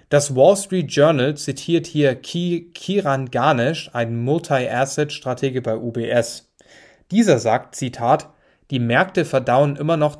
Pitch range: 120-155 Hz